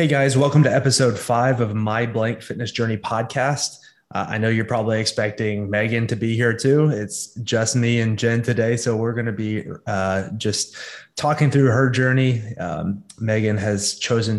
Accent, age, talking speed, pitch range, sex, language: American, 20-39, 180 wpm, 100-120 Hz, male, English